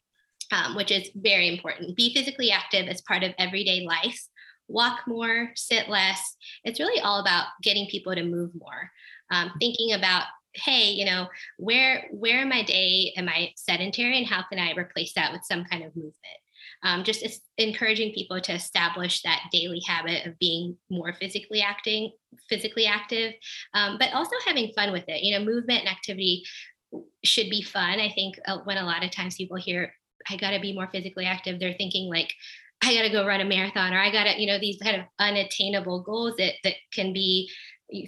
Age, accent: 20-39, American